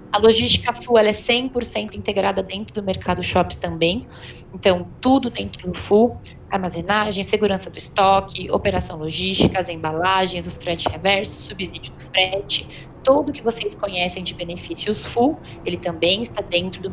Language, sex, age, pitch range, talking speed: Portuguese, female, 20-39, 175-220 Hz, 150 wpm